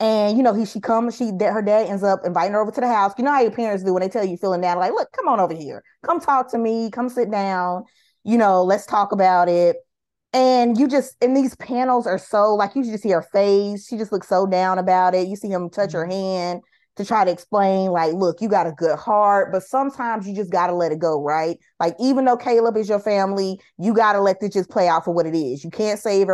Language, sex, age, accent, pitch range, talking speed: English, female, 20-39, American, 180-225 Hz, 265 wpm